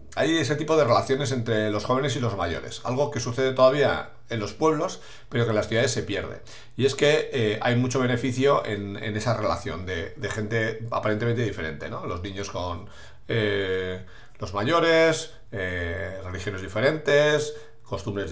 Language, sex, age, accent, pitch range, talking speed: English, male, 40-59, Spanish, 105-130 Hz, 170 wpm